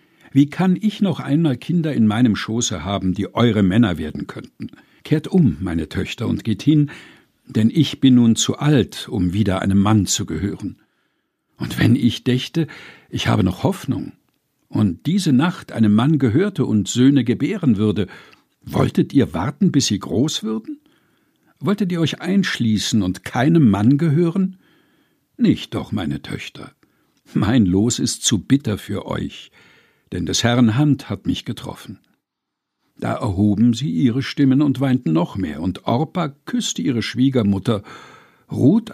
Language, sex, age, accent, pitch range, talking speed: German, male, 60-79, German, 105-155 Hz, 155 wpm